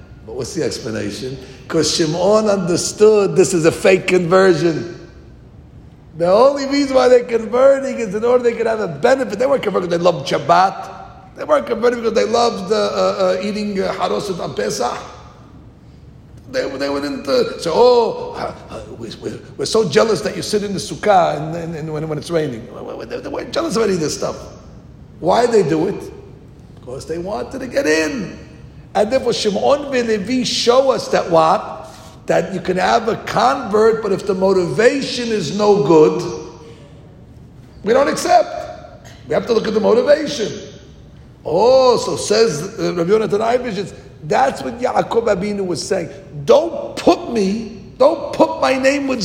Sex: male